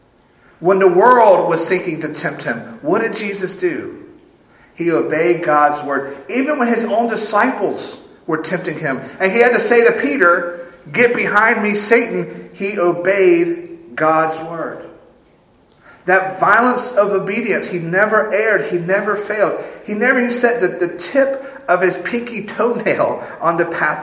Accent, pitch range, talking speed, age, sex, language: American, 140-215 Hz, 155 wpm, 50-69, male, English